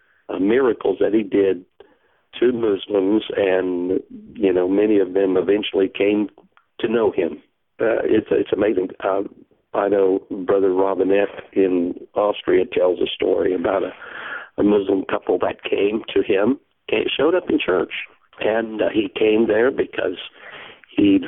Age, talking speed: 60-79, 150 wpm